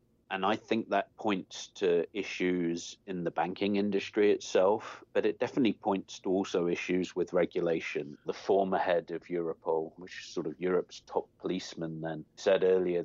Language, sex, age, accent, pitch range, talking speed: English, male, 40-59, British, 85-100 Hz, 165 wpm